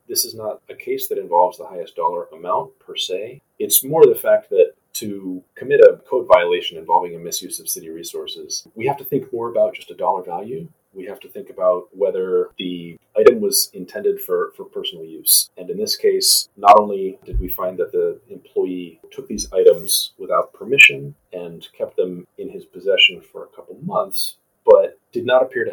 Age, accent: 30-49, American